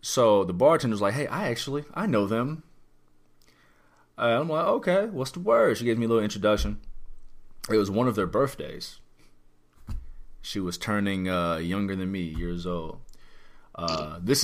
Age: 30-49